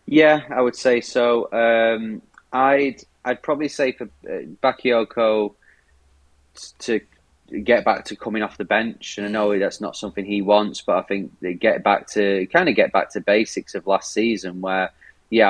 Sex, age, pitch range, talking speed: male, 20-39, 95-115 Hz, 180 wpm